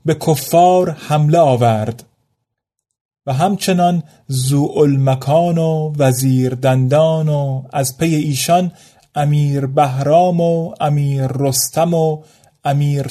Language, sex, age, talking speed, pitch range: Persian, male, 30-49, 95 wpm, 130-170 Hz